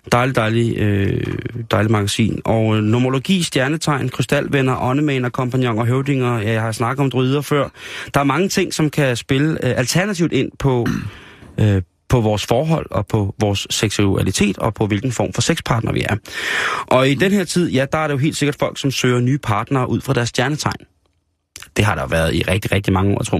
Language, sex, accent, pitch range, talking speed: Danish, male, native, 100-135 Hz, 205 wpm